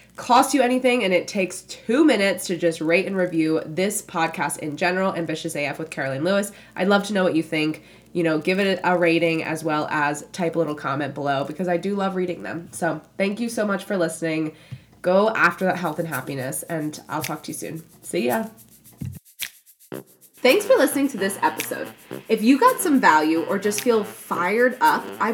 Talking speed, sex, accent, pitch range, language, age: 205 wpm, female, American, 160-225 Hz, English, 20-39